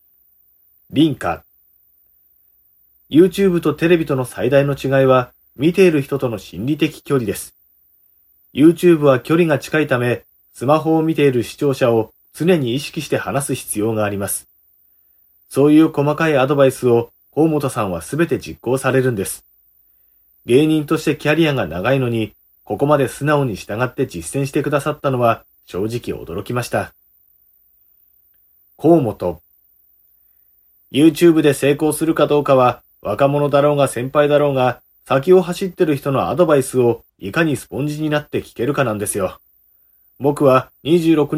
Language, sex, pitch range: Japanese, male, 100-150 Hz